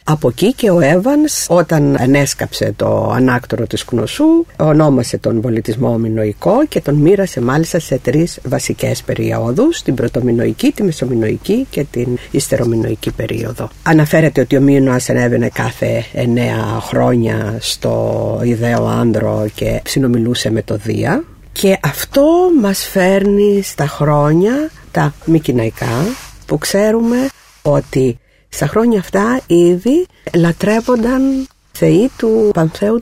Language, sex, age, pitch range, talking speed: Greek, female, 50-69, 120-195 Hz, 120 wpm